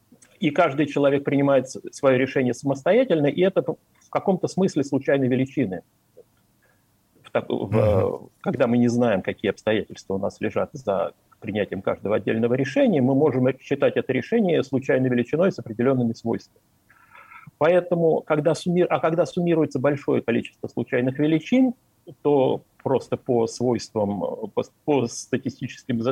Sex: male